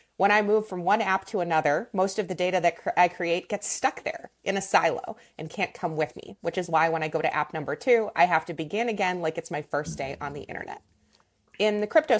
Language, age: English, 30-49